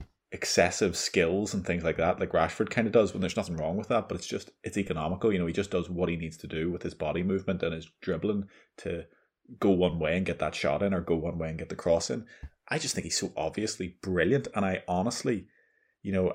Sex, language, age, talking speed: male, English, 20-39, 255 wpm